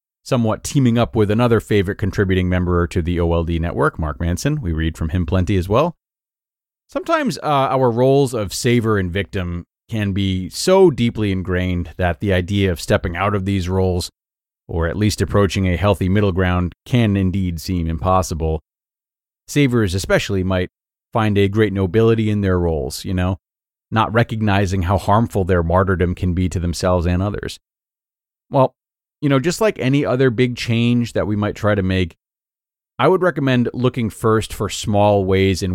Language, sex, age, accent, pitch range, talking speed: English, male, 30-49, American, 90-110 Hz, 175 wpm